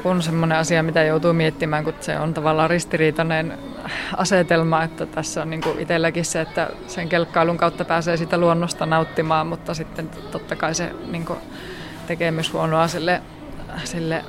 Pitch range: 165-175 Hz